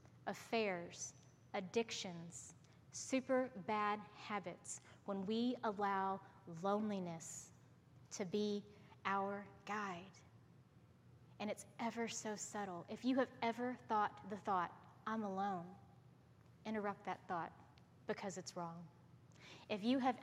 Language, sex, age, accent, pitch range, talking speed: English, female, 30-49, American, 200-265 Hz, 105 wpm